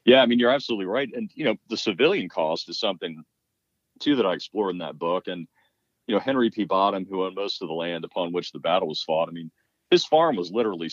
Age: 40-59